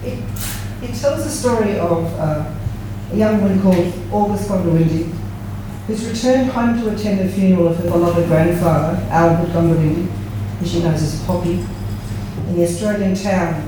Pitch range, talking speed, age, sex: 105-170 Hz, 150 wpm, 40-59, female